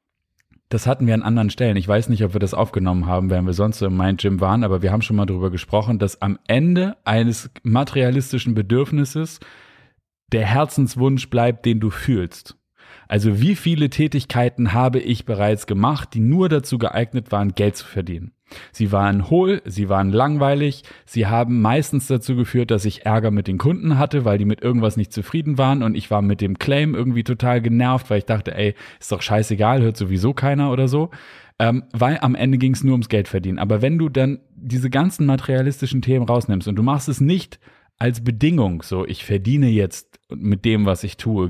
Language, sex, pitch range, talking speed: German, male, 105-130 Hz, 200 wpm